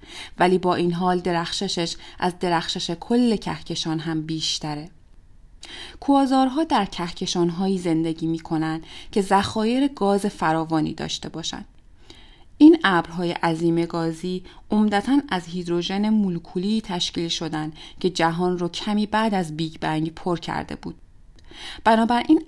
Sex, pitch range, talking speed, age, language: female, 165-195 Hz, 115 wpm, 30-49, Persian